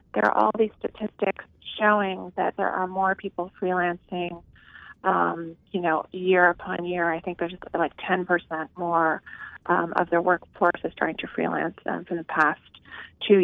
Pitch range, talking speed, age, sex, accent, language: 175-200 Hz, 170 wpm, 30-49, female, American, English